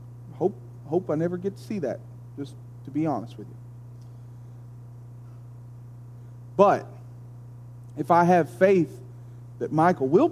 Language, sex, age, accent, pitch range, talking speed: English, male, 40-59, American, 120-190 Hz, 120 wpm